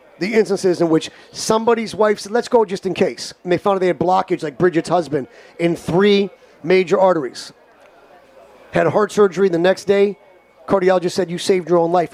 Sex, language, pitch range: male, English, 165-195 Hz